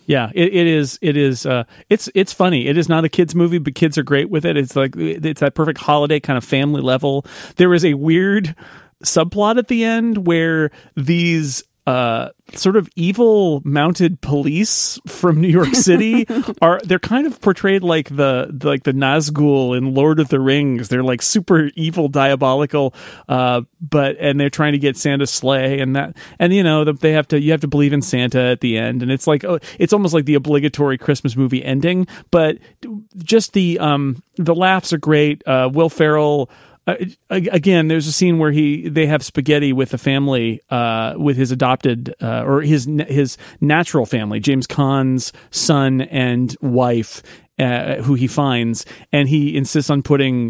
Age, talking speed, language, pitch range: 40-59, 185 wpm, English, 130-170 Hz